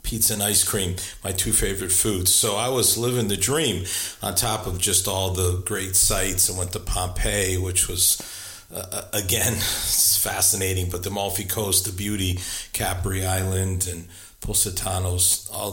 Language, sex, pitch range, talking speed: English, male, 95-110 Hz, 160 wpm